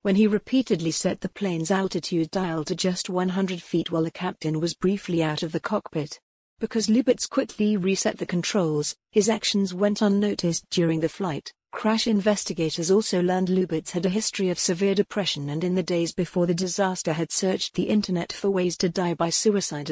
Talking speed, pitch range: 185 wpm, 170-200 Hz